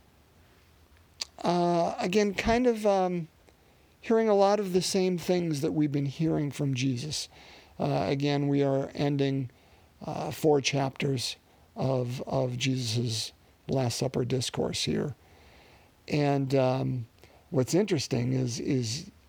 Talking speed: 120 wpm